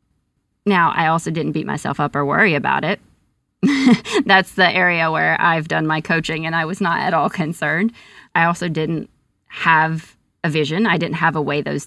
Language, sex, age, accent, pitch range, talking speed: English, female, 30-49, American, 160-195 Hz, 190 wpm